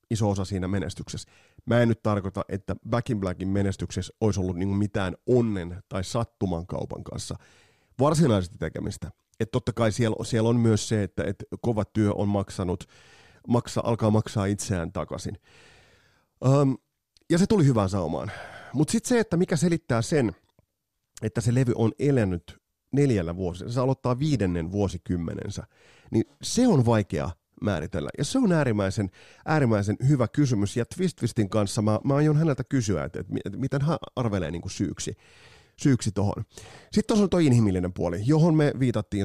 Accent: native